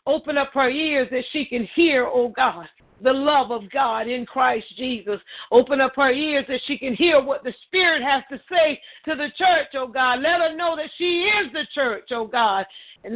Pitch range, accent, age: 250-310 Hz, American, 50-69